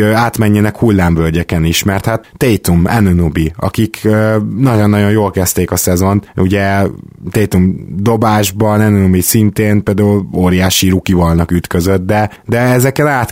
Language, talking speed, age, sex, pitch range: Hungarian, 115 wpm, 20-39, male, 95-110 Hz